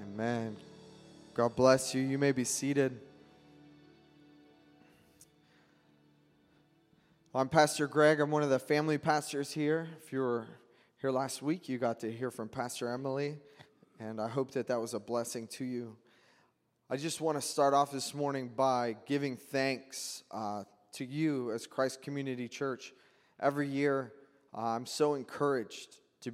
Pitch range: 110-135 Hz